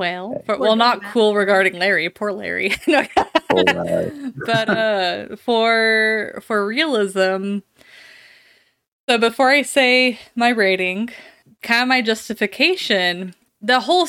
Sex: female